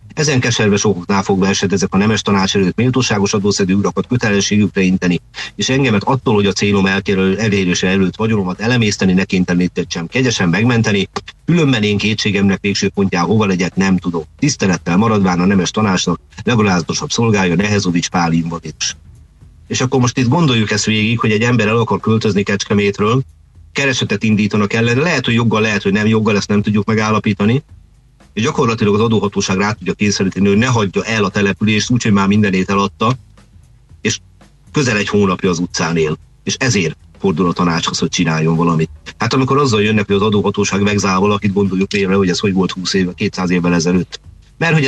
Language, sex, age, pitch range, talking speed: Hungarian, male, 50-69, 90-110 Hz, 180 wpm